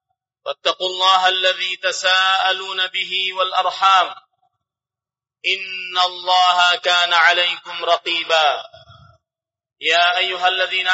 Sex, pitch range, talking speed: male, 175-190 Hz, 75 wpm